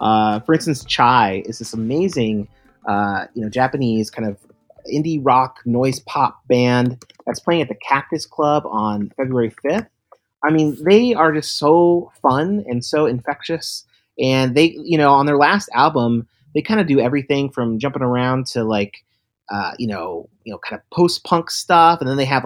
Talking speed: 180 wpm